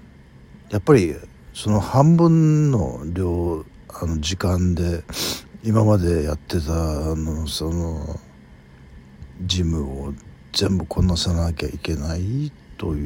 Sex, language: male, Japanese